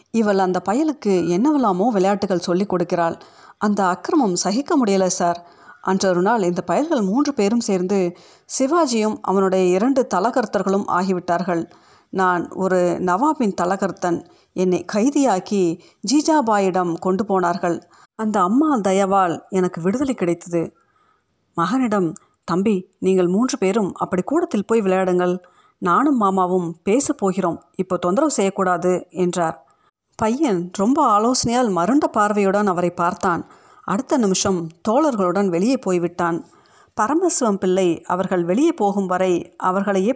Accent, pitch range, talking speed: native, 180-225 Hz, 110 wpm